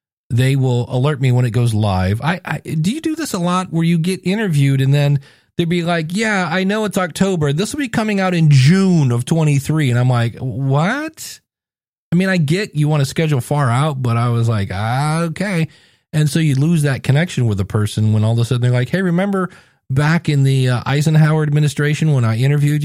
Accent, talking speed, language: American, 225 wpm, English